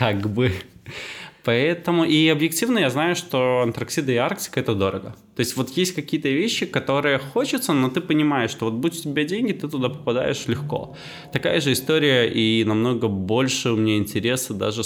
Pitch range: 95-125 Hz